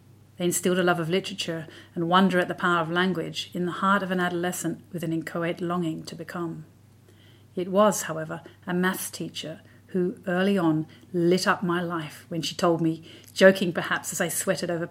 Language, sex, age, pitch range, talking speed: English, female, 40-59, 155-190 Hz, 195 wpm